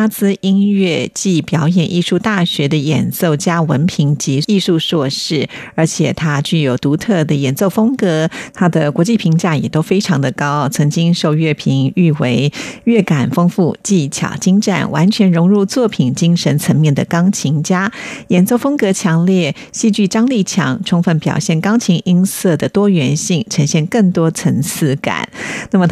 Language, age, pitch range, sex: Chinese, 50-69, 150-190 Hz, female